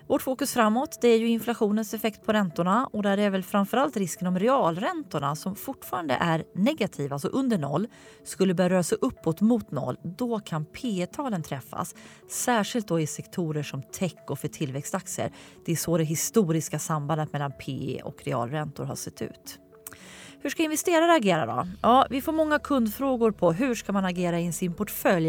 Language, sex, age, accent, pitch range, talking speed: Swedish, female, 30-49, native, 160-230 Hz, 180 wpm